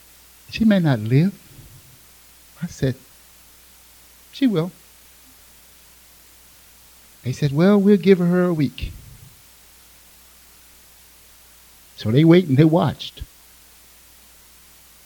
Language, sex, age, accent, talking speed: English, male, 60-79, American, 90 wpm